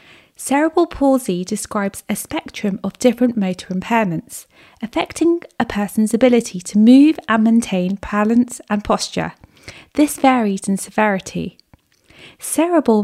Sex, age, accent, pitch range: female, 30-49, British, 205-275 Hz